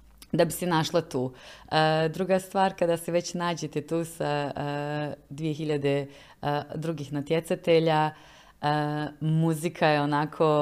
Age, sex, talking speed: 30-49, female, 130 wpm